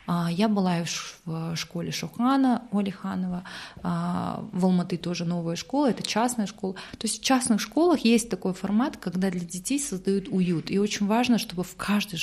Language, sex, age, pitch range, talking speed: Russian, female, 20-39, 170-205 Hz, 160 wpm